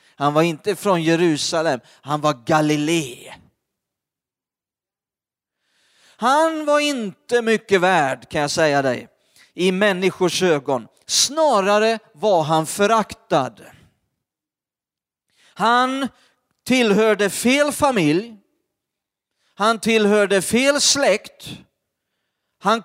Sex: male